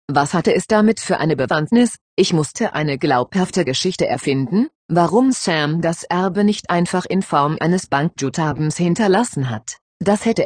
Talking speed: 155 wpm